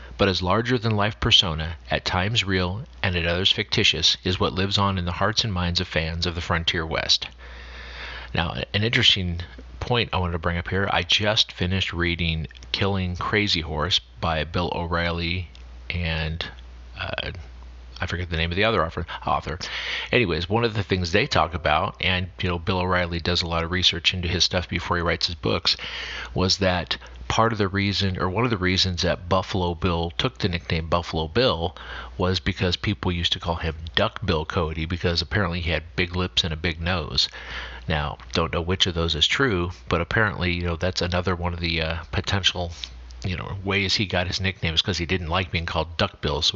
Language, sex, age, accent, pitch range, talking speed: English, male, 40-59, American, 85-95 Hz, 200 wpm